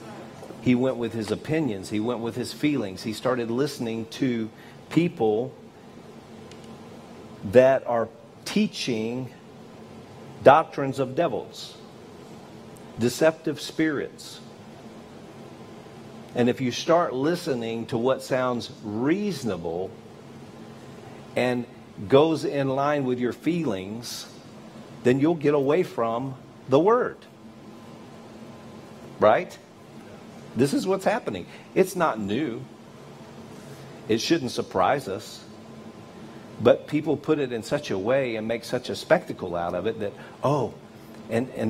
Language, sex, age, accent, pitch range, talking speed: English, male, 50-69, American, 115-145 Hz, 115 wpm